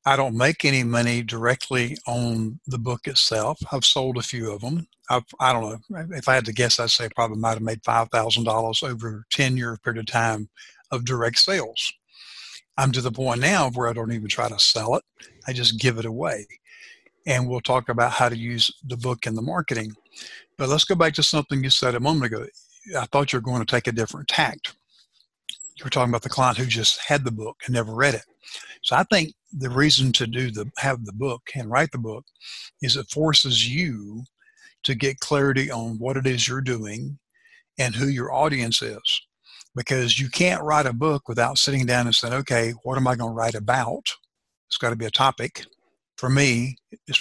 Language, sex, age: English, male, 60-79